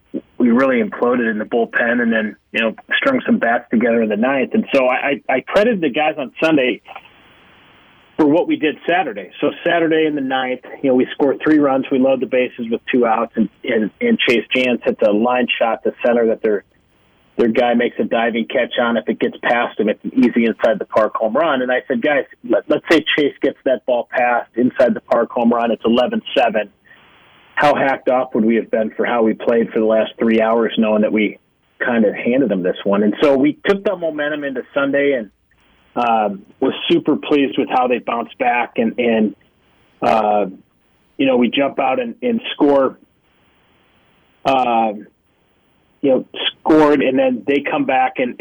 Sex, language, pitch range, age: male, English, 115-145 Hz, 40-59